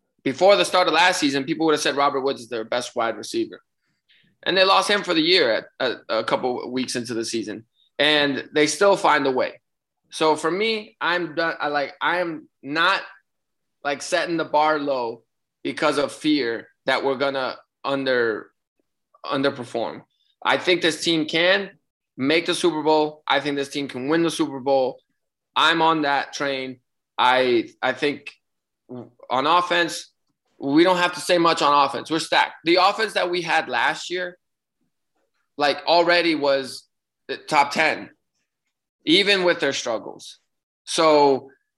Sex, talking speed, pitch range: male, 170 wpm, 140-170 Hz